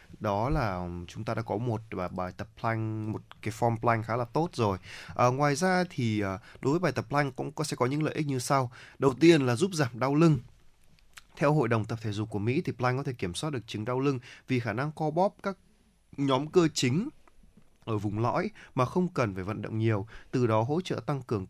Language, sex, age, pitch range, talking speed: Vietnamese, male, 20-39, 110-145 Hz, 240 wpm